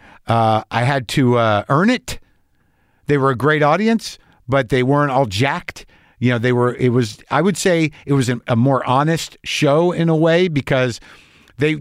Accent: American